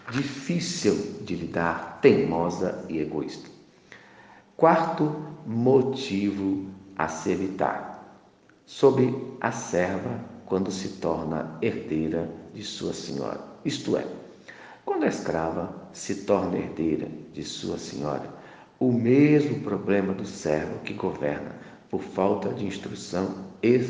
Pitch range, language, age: 85-120 Hz, Portuguese, 50-69